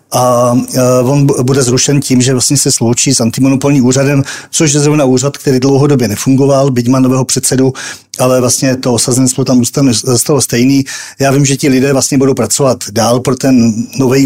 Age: 40-59